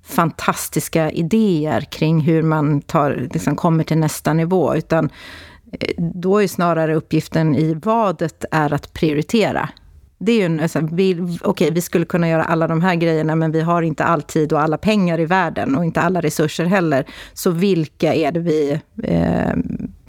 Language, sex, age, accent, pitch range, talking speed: Swedish, female, 30-49, native, 155-185 Hz, 165 wpm